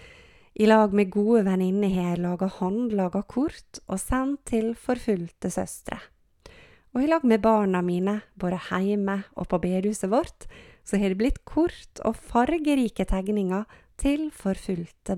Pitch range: 190-235 Hz